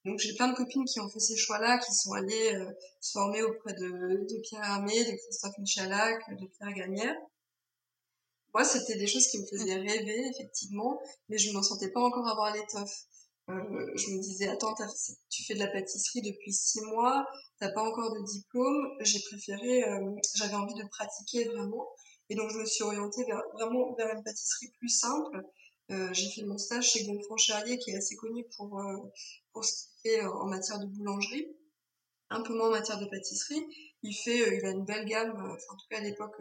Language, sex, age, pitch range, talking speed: French, female, 20-39, 200-235 Hz, 205 wpm